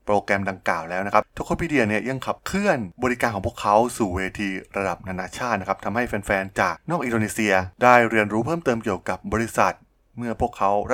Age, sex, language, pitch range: 20-39, male, Thai, 95-115 Hz